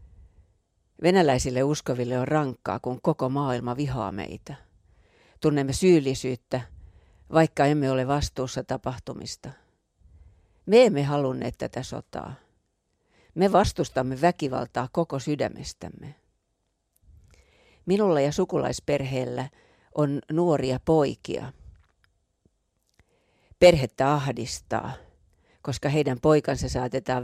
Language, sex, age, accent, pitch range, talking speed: Finnish, female, 50-69, native, 95-145 Hz, 85 wpm